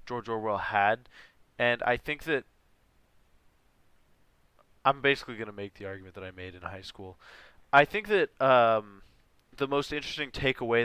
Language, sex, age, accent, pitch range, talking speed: English, male, 20-39, American, 100-130 Hz, 150 wpm